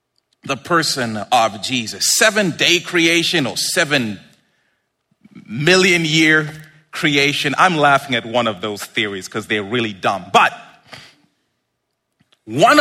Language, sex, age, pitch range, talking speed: English, male, 40-59, 140-195 Hz, 115 wpm